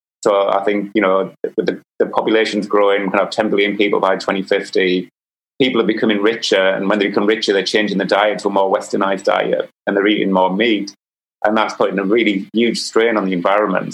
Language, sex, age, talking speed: English, male, 30-49, 220 wpm